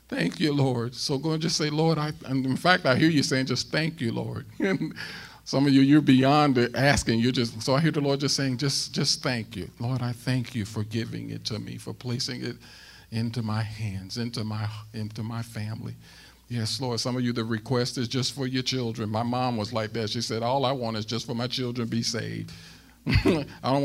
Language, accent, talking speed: English, American, 230 wpm